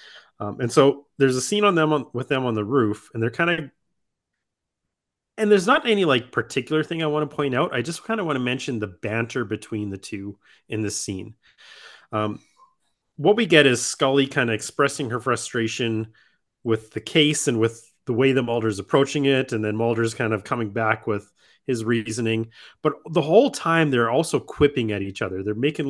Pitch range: 110-135 Hz